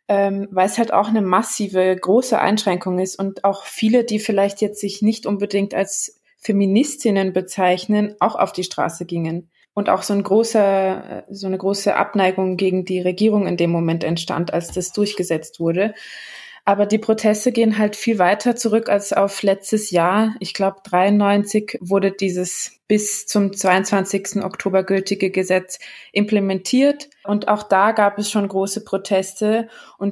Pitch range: 185-210 Hz